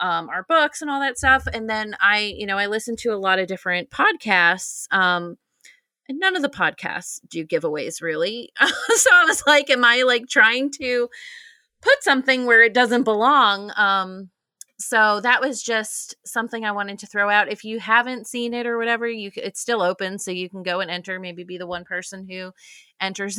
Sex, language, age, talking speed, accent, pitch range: female, English, 30-49, 205 wpm, American, 185-255 Hz